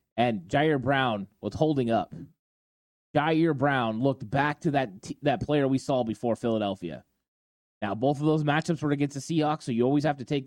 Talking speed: 195 wpm